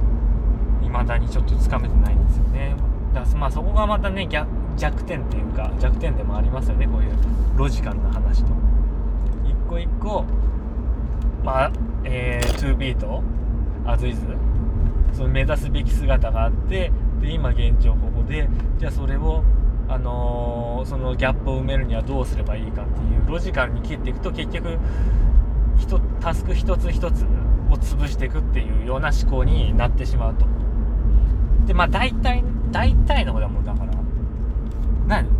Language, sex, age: Japanese, male, 20-39